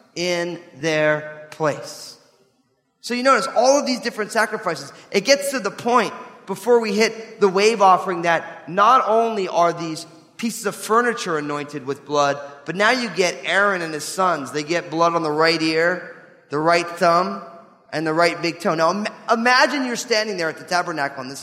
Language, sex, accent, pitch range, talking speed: English, male, American, 150-220 Hz, 185 wpm